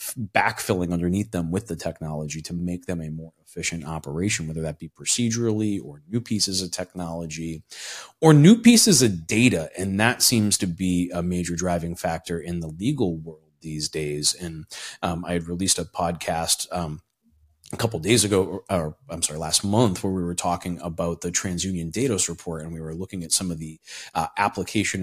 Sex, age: male, 30-49